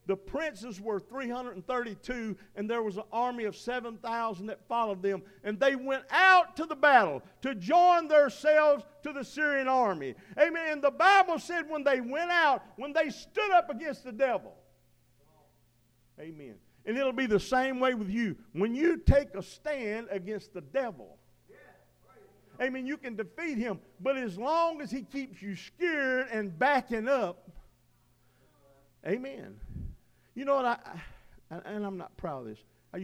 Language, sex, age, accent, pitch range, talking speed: English, male, 50-69, American, 160-255 Hz, 160 wpm